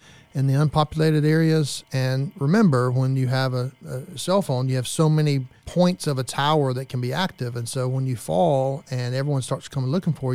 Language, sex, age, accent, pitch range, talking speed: English, male, 40-59, American, 125-145 Hz, 210 wpm